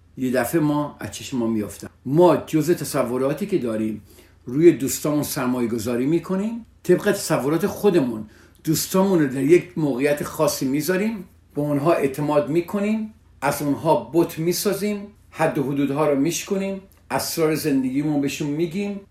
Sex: male